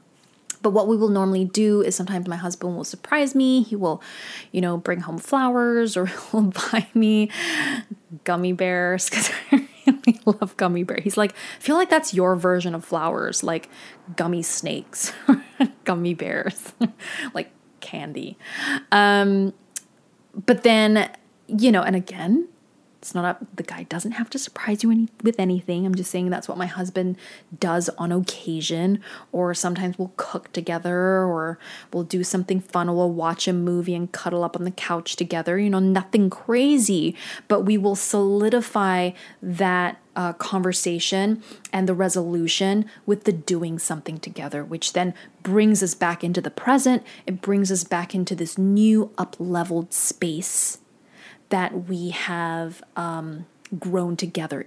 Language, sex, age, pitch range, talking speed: English, female, 20-39, 175-210 Hz, 155 wpm